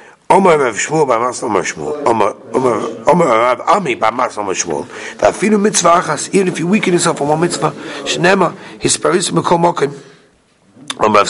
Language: English